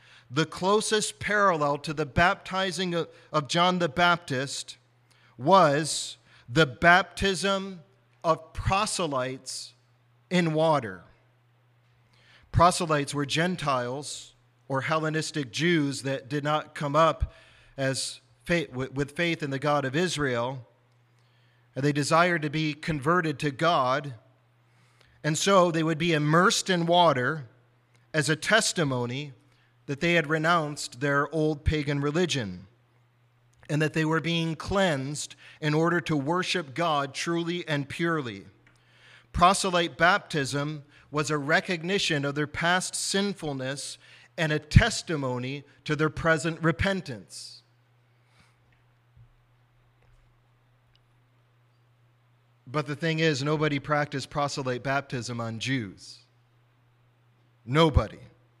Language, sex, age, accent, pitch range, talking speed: English, male, 40-59, American, 120-165 Hz, 105 wpm